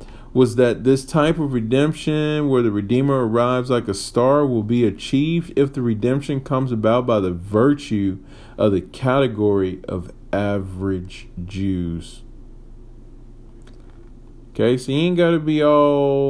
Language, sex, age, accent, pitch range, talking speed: English, male, 40-59, American, 105-130 Hz, 140 wpm